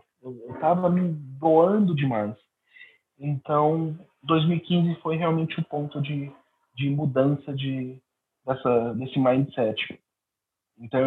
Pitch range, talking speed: 125-155 Hz, 105 wpm